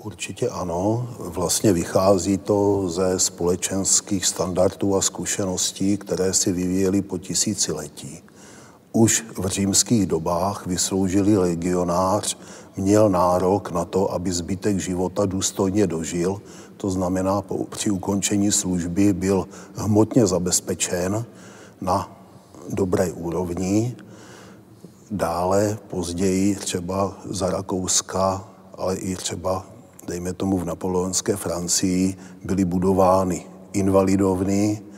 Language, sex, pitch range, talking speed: Czech, male, 90-100 Hz, 100 wpm